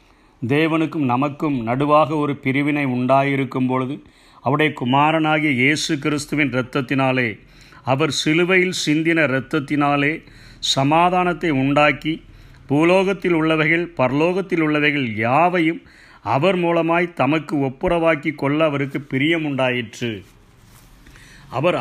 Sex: male